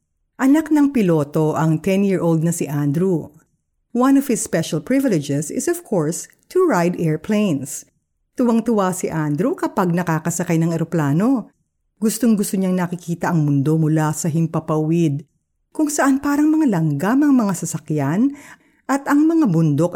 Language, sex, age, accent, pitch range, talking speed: Filipino, female, 50-69, native, 160-260 Hz, 135 wpm